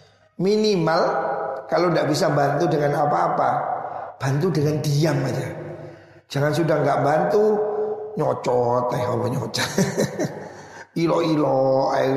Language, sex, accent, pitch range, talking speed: Indonesian, male, native, 135-175 Hz, 95 wpm